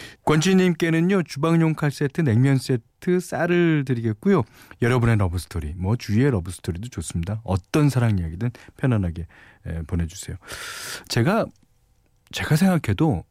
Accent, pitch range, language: native, 100-155 Hz, Korean